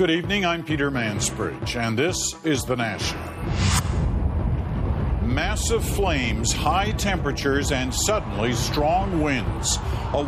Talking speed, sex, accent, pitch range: 110 wpm, male, native, 105-140 Hz